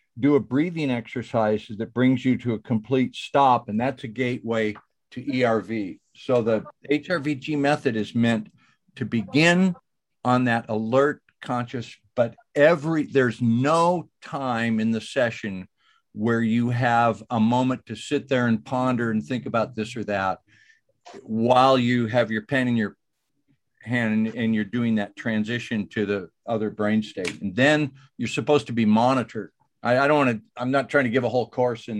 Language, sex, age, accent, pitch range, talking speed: English, male, 50-69, American, 110-135 Hz, 175 wpm